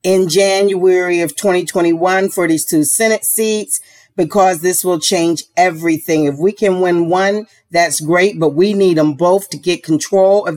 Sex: female